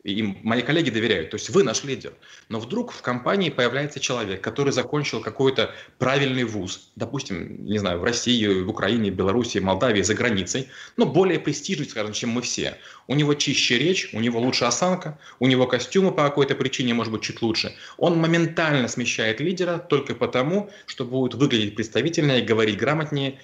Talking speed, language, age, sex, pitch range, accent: 175 wpm, Russian, 20-39, male, 115-145 Hz, native